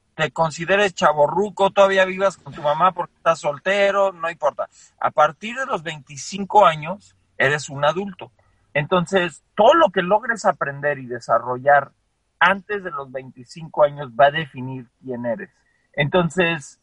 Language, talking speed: Spanish, 145 wpm